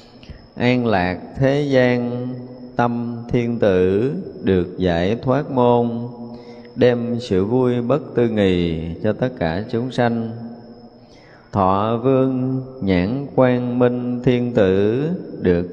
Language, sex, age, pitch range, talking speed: Vietnamese, male, 20-39, 100-125 Hz, 115 wpm